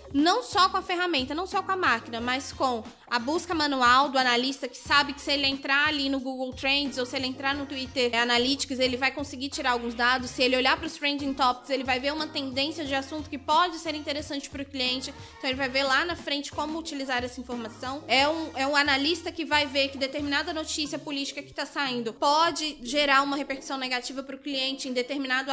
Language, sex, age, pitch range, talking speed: Portuguese, female, 20-39, 250-295 Hz, 230 wpm